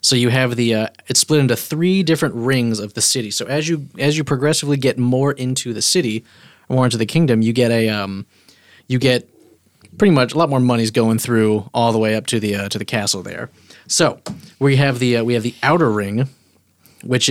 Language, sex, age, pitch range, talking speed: English, male, 30-49, 110-140 Hz, 225 wpm